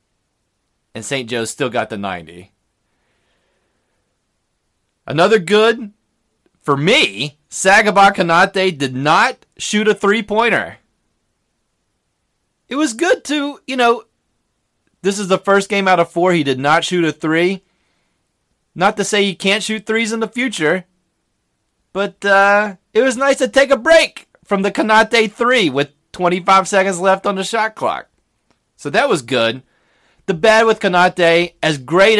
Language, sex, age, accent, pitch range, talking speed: English, male, 30-49, American, 135-200 Hz, 145 wpm